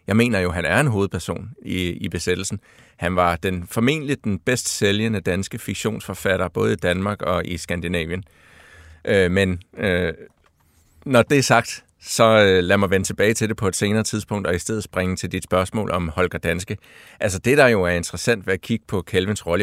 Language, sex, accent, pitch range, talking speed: Danish, male, native, 90-110 Hz, 200 wpm